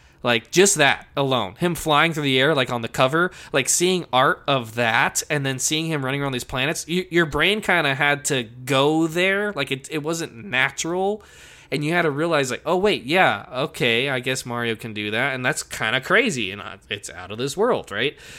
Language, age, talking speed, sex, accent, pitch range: English, 20-39, 220 wpm, male, American, 115-155 Hz